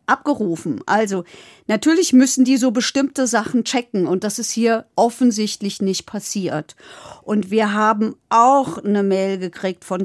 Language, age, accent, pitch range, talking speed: German, 50-69, German, 195-245 Hz, 145 wpm